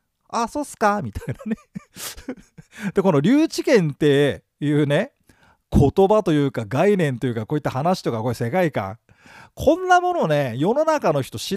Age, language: 40-59, Japanese